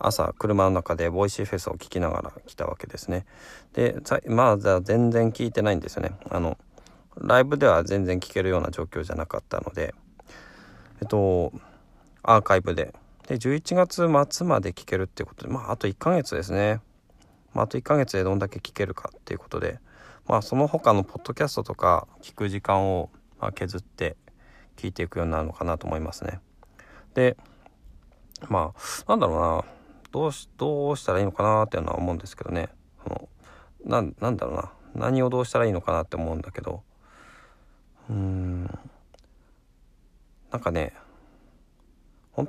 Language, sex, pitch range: Japanese, male, 90-130 Hz